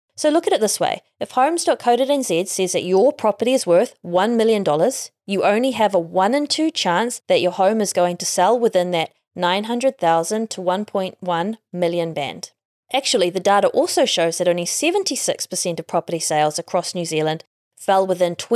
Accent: Australian